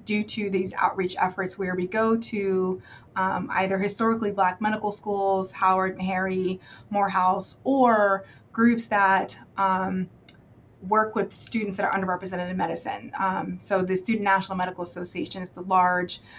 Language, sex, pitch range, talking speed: English, female, 185-205 Hz, 145 wpm